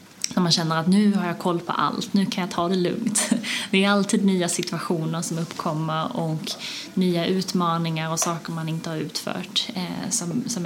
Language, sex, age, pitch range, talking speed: Swedish, female, 20-39, 165-210 Hz, 185 wpm